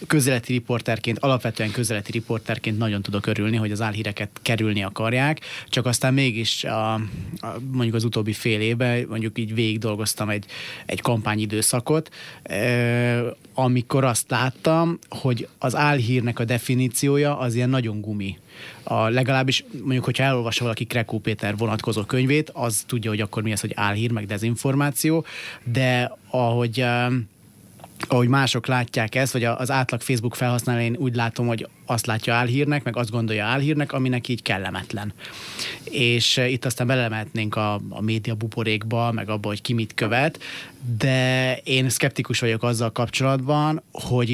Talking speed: 150 wpm